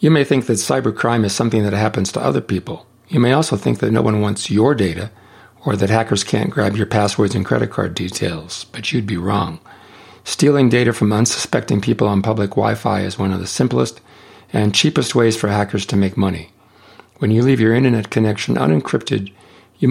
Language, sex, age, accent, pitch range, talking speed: English, male, 50-69, American, 100-115 Hz, 200 wpm